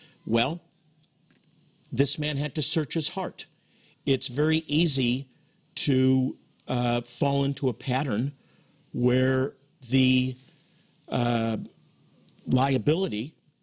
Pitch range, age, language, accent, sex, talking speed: 130-165 Hz, 50-69, English, American, male, 95 wpm